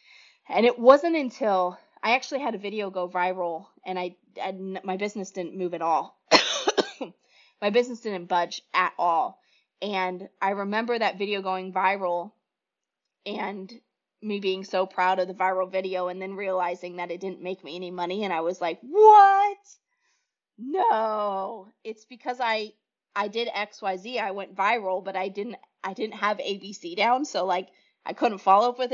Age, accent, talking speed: 20-39, American, 170 wpm